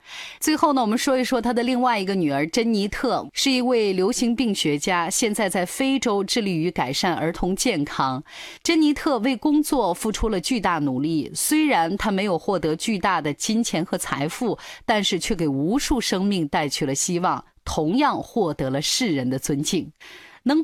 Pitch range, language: 165-245 Hz, Chinese